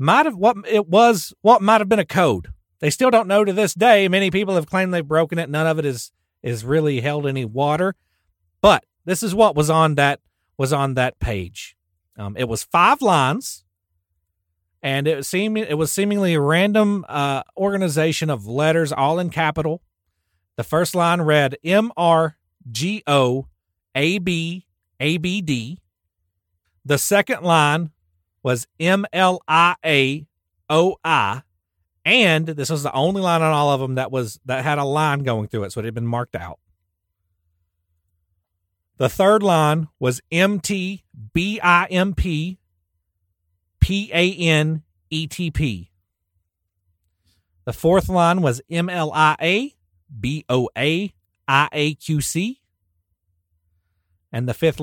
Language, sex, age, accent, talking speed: English, male, 40-59, American, 135 wpm